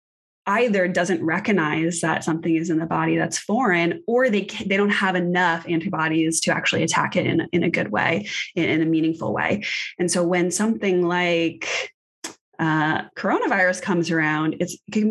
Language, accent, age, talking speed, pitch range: English, American, 20-39, 175 wpm, 165-195 Hz